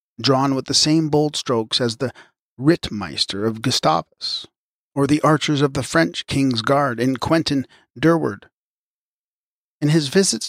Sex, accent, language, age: male, American, English, 40-59